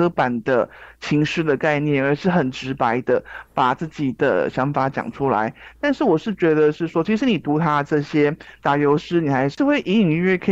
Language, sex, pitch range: Chinese, male, 135-175 Hz